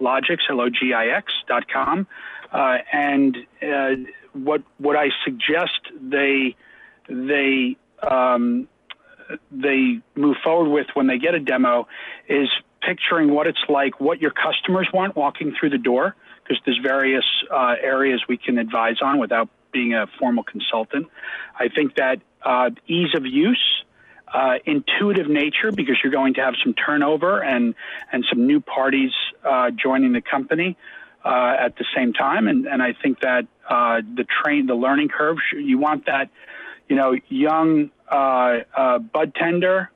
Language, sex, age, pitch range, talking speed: English, male, 40-59, 130-205 Hz, 155 wpm